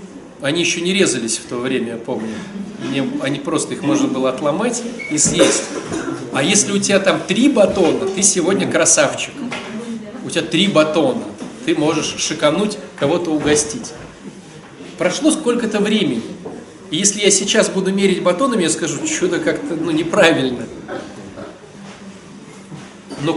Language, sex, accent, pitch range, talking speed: Russian, male, native, 170-220 Hz, 135 wpm